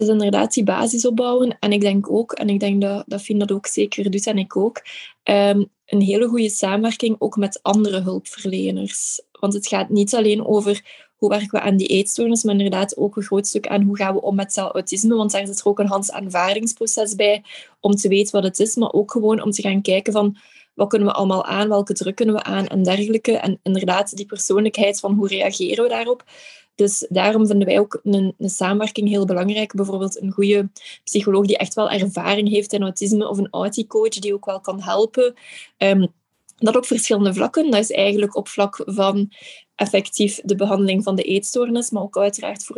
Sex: female